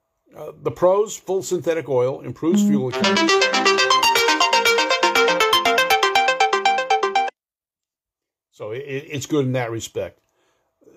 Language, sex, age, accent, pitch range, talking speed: English, male, 60-79, American, 130-175 Hz, 90 wpm